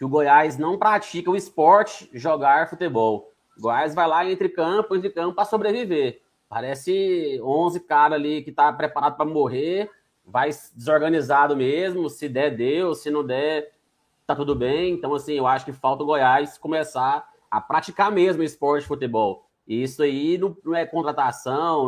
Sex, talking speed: male, 160 wpm